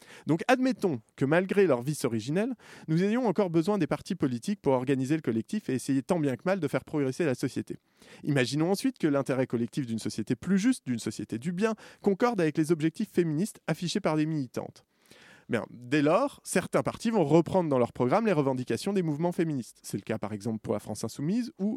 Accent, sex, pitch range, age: French, male, 125-195 Hz, 20-39